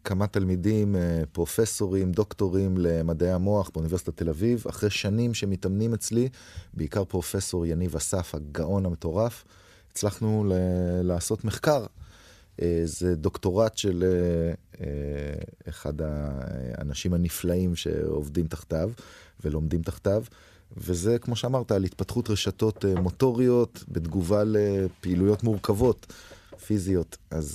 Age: 30-49